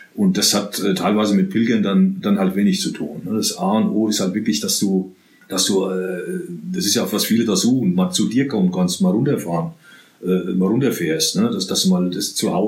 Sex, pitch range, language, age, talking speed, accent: male, 105-140 Hz, German, 40-59, 240 wpm, German